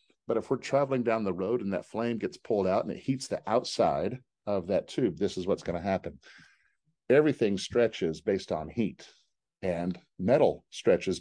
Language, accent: English, American